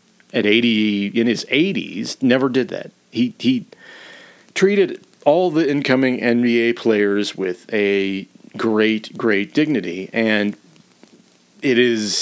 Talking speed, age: 120 wpm, 40-59